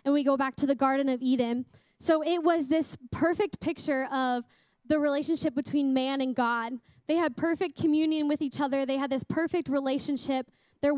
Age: 10-29